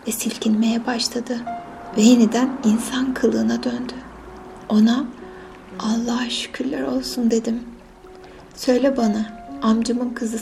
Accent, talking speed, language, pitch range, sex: native, 100 wpm, Turkish, 220-245 Hz, female